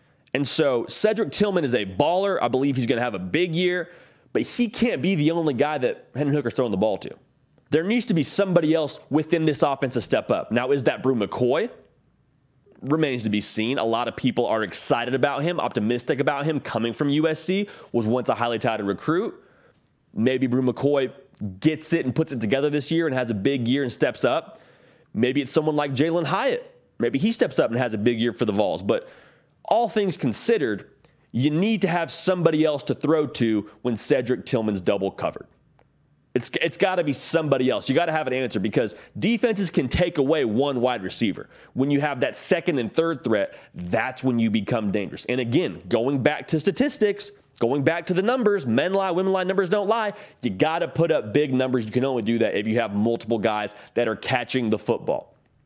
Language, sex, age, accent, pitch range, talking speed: English, male, 30-49, American, 125-175 Hz, 215 wpm